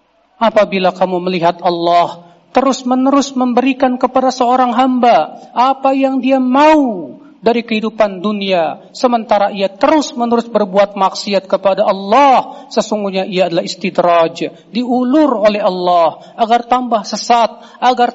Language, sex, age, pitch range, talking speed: Indonesian, male, 40-59, 190-260 Hz, 110 wpm